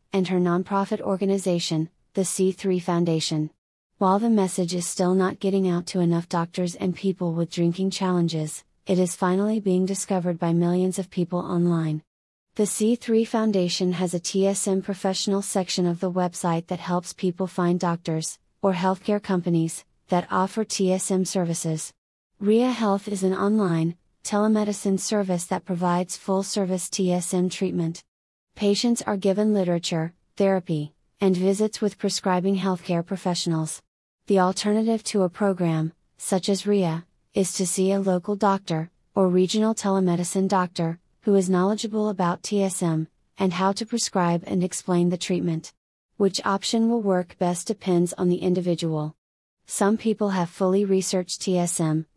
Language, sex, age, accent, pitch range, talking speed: English, female, 30-49, American, 175-195 Hz, 145 wpm